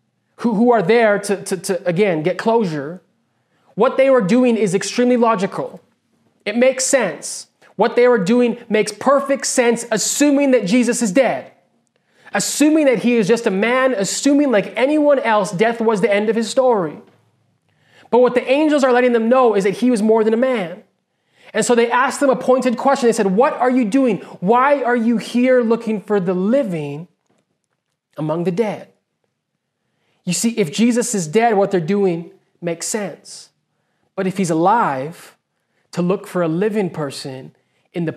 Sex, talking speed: male, 180 wpm